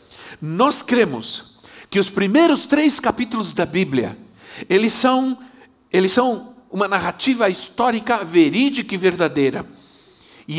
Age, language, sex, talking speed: 60-79, Portuguese, male, 115 wpm